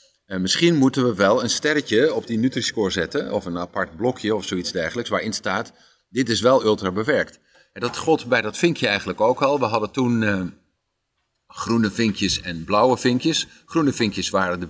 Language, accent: Dutch, Dutch